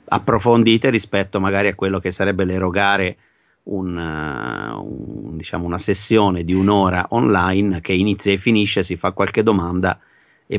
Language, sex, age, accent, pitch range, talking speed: Italian, male, 30-49, native, 90-100 Hz, 140 wpm